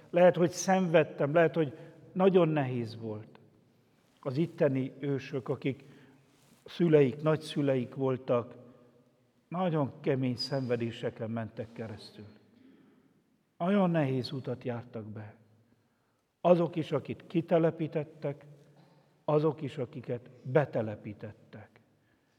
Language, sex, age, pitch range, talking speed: Hungarian, male, 60-79, 120-160 Hz, 90 wpm